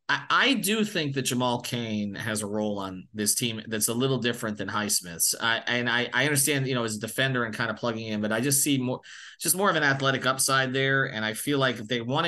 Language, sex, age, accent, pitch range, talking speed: English, male, 30-49, American, 115-140 Hz, 255 wpm